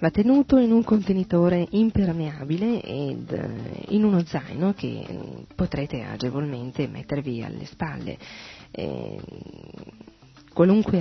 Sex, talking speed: female, 95 wpm